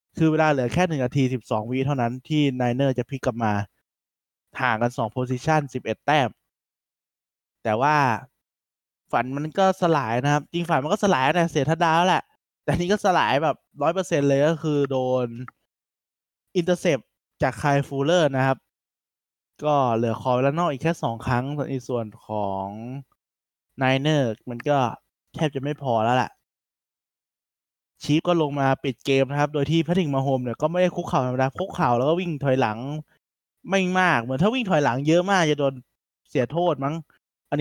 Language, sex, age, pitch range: Thai, male, 20-39, 125-160 Hz